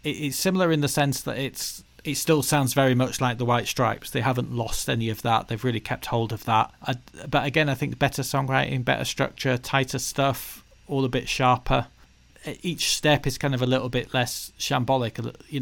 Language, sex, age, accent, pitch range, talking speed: English, male, 40-59, British, 125-145 Hz, 210 wpm